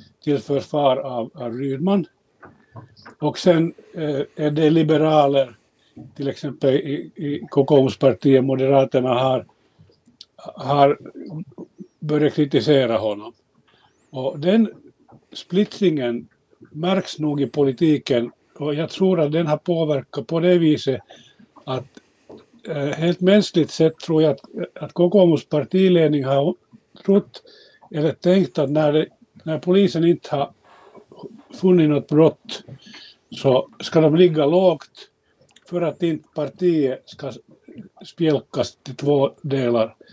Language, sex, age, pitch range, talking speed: Swedish, male, 60-79, 140-170 Hz, 115 wpm